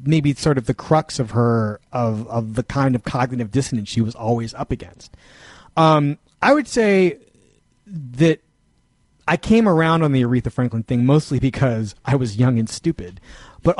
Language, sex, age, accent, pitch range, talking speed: English, male, 30-49, American, 115-165 Hz, 180 wpm